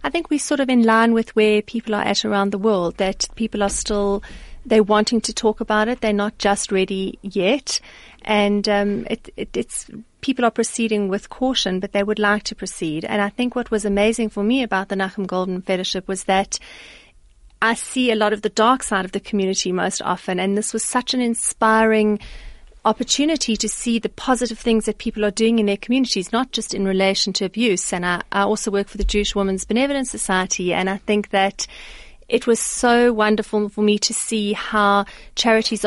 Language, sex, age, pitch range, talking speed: English, female, 30-49, 200-230 Hz, 205 wpm